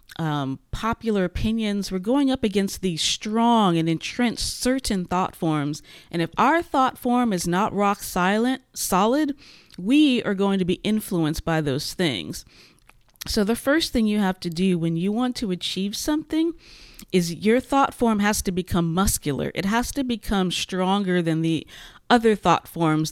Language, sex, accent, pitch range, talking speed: English, female, American, 175-230 Hz, 165 wpm